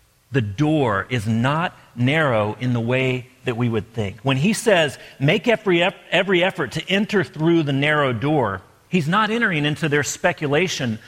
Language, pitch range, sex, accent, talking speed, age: English, 120-165 Hz, male, American, 160 wpm, 40-59